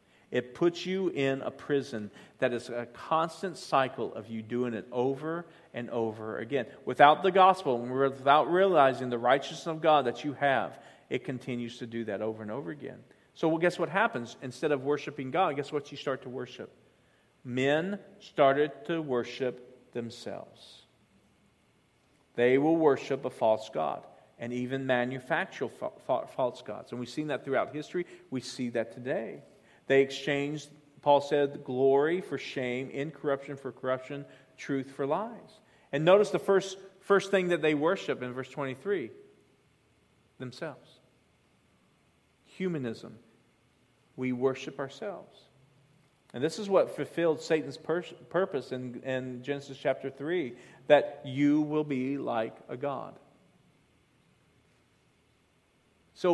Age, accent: 40-59, American